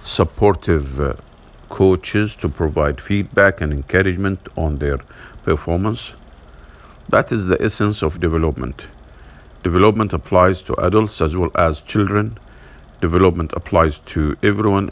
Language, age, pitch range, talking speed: English, 50-69, 80-100 Hz, 115 wpm